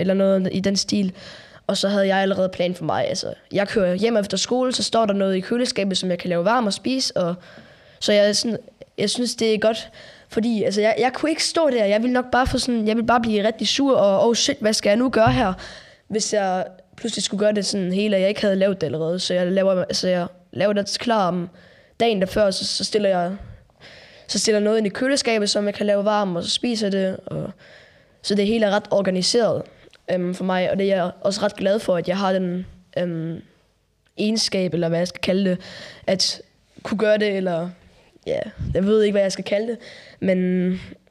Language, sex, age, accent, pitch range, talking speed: Danish, female, 10-29, native, 185-215 Hz, 230 wpm